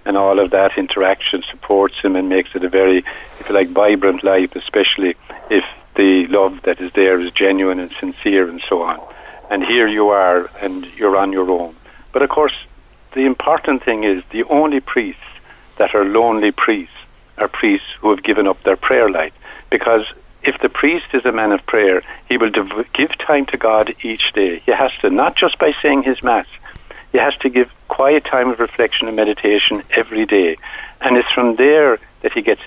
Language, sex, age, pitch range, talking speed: English, male, 60-79, 100-145 Hz, 200 wpm